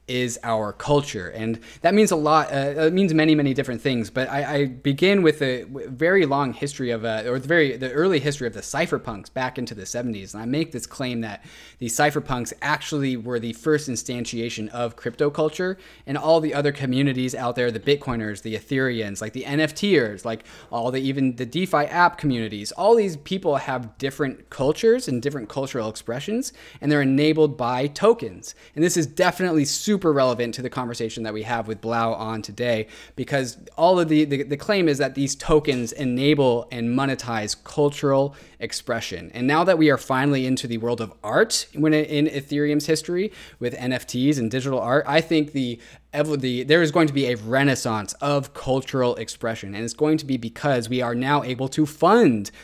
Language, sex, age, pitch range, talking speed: English, male, 20-39, 115-150 Hz, 195 wpm